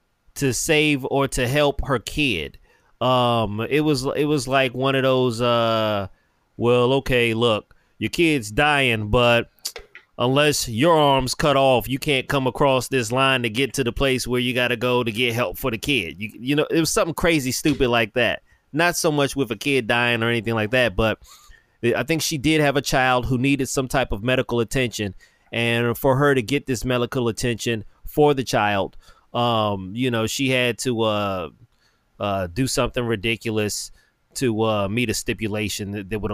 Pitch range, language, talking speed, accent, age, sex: 115-135 Hz, English, 190 wpm, American, 30-49, male